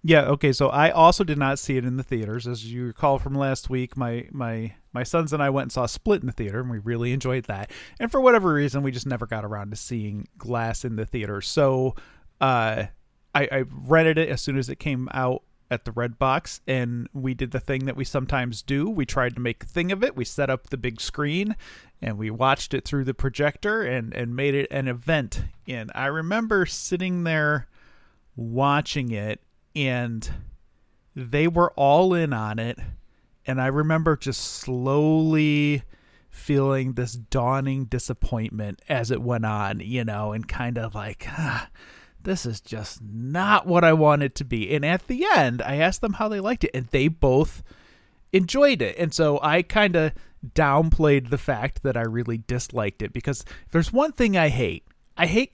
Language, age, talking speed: English, 40-59, 200 wpm